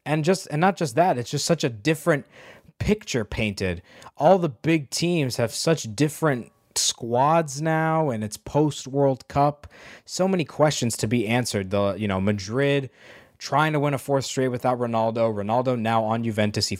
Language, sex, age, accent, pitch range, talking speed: English, male, 20-39, American, 100-125 Hz, 175 wpm